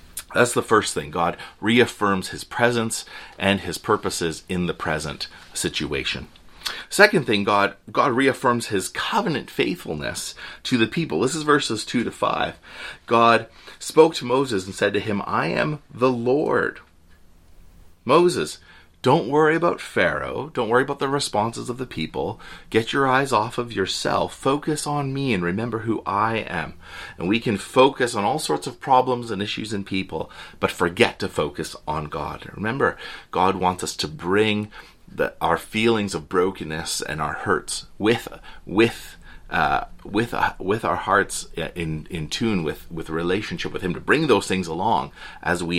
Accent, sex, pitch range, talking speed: American, male, 90-125 Hz, 170 wpm